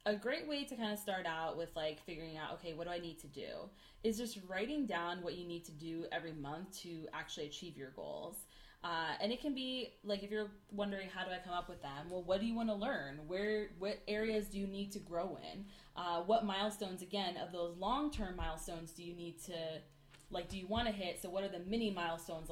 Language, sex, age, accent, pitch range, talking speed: English, female, 20-39, American, 165-210 Hz, 240 wpm